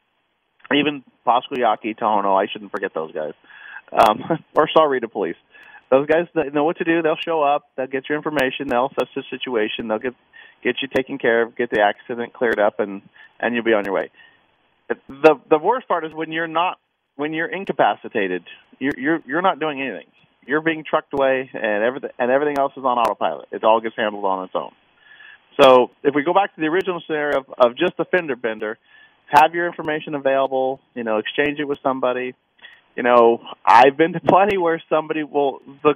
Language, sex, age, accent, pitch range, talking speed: English, male, 40-59, American, 130-160 Hz, 200 wpm